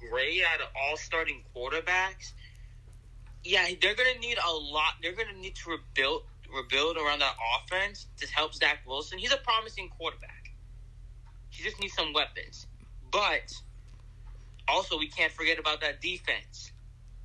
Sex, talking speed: male, 145 wpm